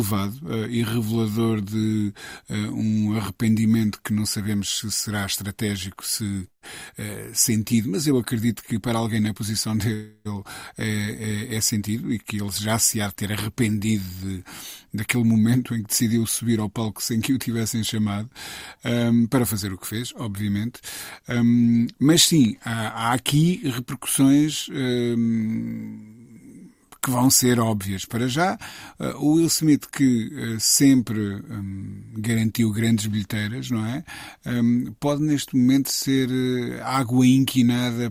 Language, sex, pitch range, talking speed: Portuguese, male, 110-125 Hz, 150 wpm